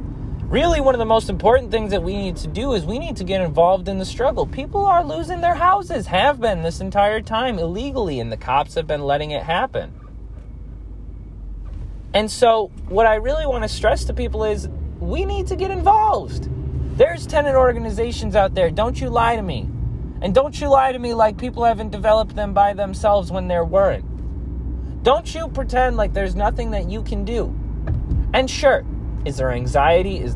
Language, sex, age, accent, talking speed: English, male, 30-49, American, 195 wpm